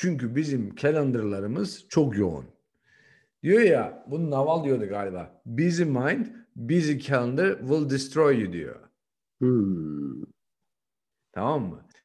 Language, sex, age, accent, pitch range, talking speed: Turkish, male, 50-69, native, 130-170 Hz, 110 wpm